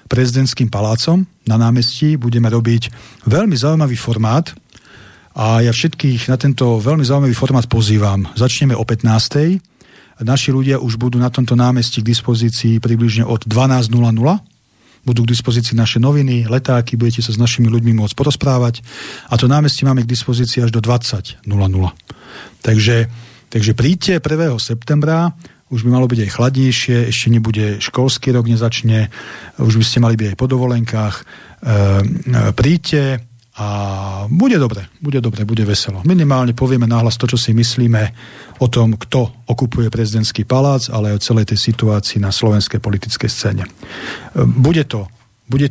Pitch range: 110-130 Hz